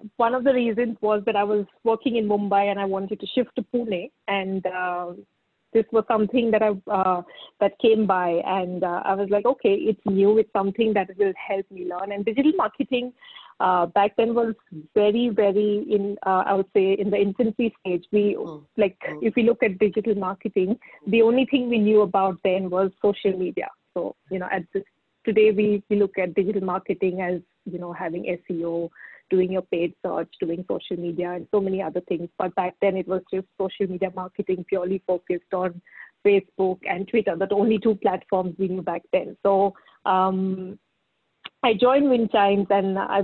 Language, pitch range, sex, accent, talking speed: English, 185-215 Hz, female, Indian, 190 wpm